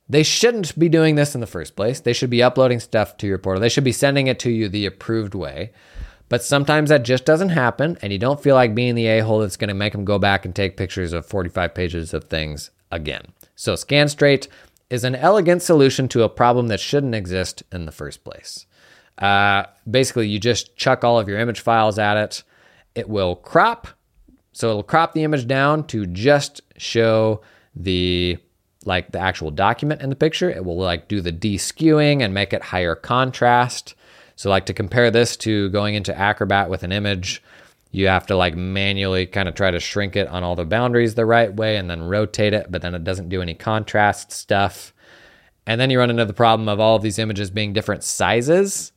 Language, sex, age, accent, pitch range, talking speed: English, male, 30-49, American, 95-125 Hz, 210 wpm